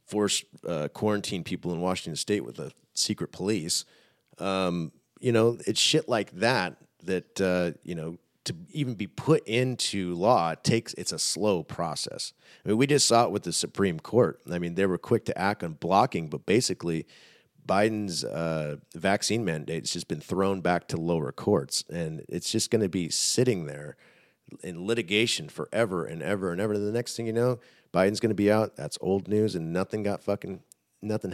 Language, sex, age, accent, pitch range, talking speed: English, male, 40-59, American, 90-120 Hz, 190 wpm